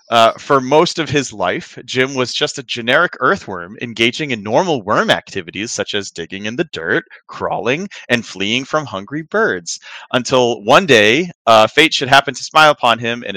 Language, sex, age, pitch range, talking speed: English, male, 30-49, 110-145 Hz, 185 wpm